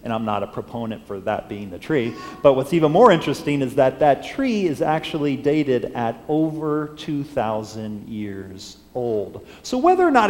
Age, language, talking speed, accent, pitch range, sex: 40-59, English, 180 wpm, American, 105-165 Hz, male